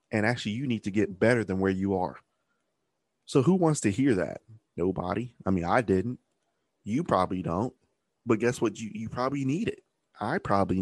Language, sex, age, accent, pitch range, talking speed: English, male, 20-39, American, 95-110 Hz, 195 wpm